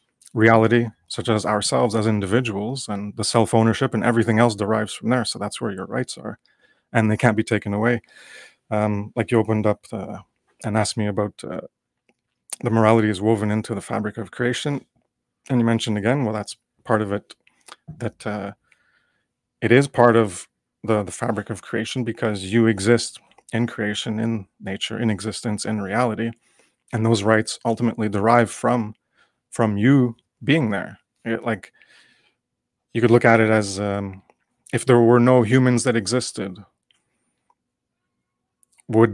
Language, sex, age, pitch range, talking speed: English, male, 30-49, 105-120 Hz, 160 wpm